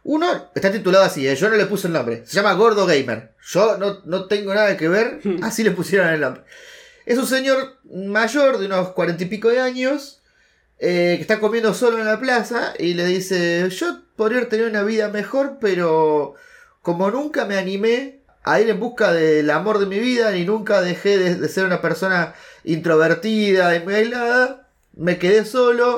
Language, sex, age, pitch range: Spanish, male, 30-49, 170-230 Hz